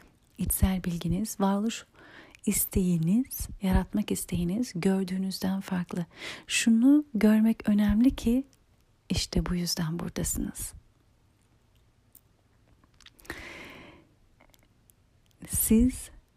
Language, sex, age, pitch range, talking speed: Turkish, female, 40-59, 180-220 Hz, 60 wpm